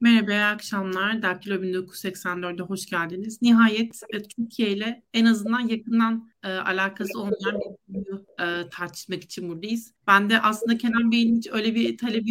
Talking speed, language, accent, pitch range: 150 wpm, Turkish, native, 185-230 Hz